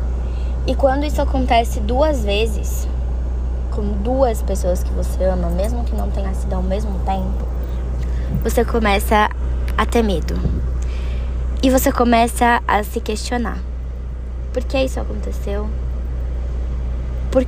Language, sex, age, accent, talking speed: Portuguese, female, 10-29, Brazilian, 125 wpm